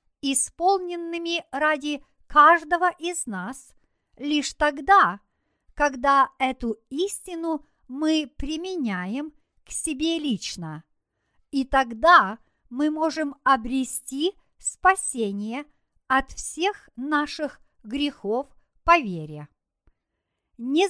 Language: Russian